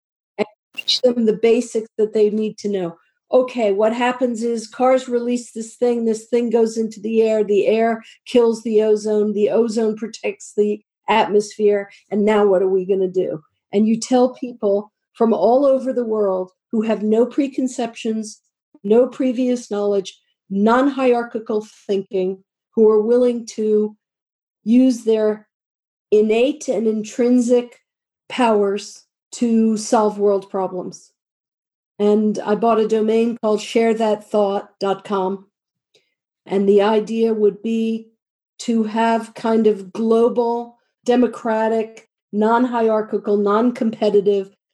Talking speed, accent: 125 wpm, American